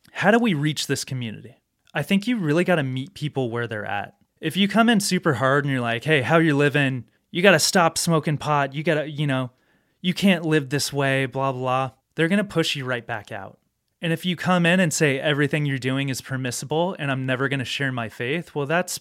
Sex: male